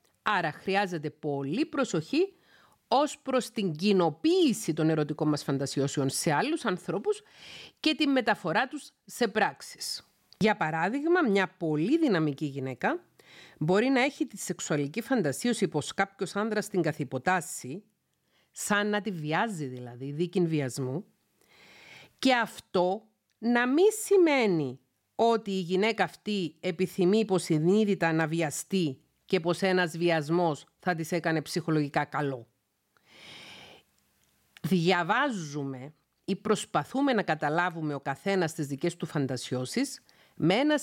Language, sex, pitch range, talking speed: Greek, female, 150-220 Hz, 120 wpm